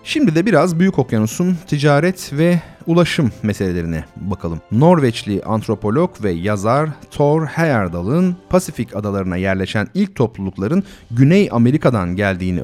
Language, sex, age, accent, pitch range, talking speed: Turkish, male, 40-59, native, 105-170 Hz, 115 wpm